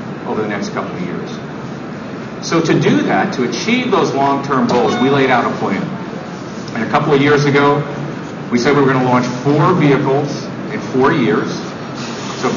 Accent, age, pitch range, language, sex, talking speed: American, 50-69, 125-165 Hz, English, male, 185 wpm